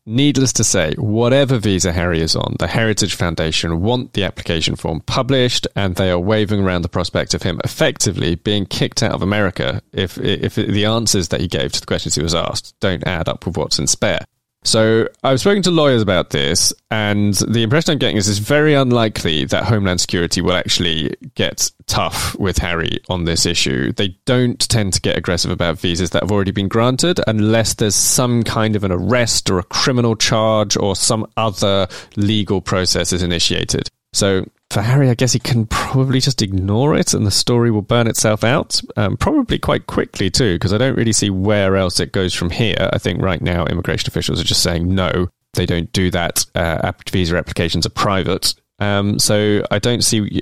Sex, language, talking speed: male, English, 200 wpm